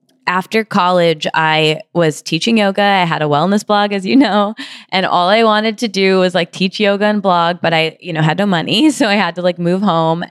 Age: 20-39